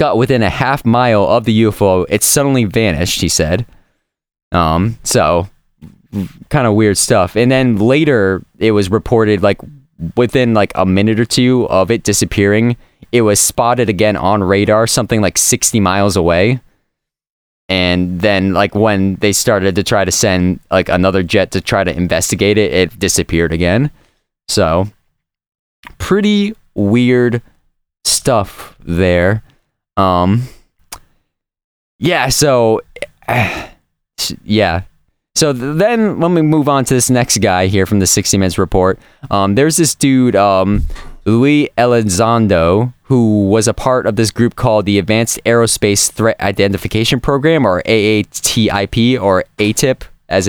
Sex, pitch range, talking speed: male, 95-120 Hz, 140 wpm